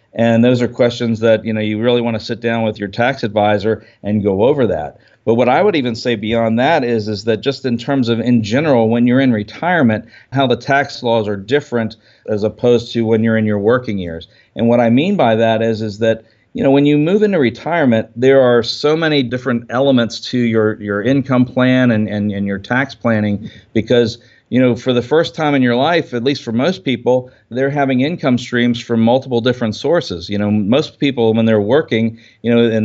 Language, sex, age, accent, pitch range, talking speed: English, male, 50-69, American, 110-130 Hz, 235 wpm